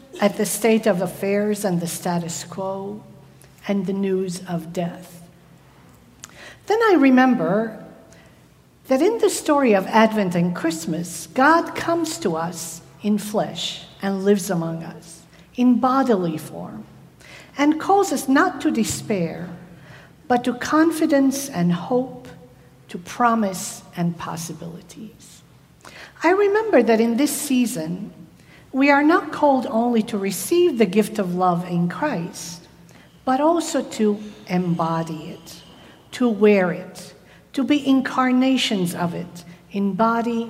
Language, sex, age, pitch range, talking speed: English, female, 50-69, 175-255 Hz, 130 wpm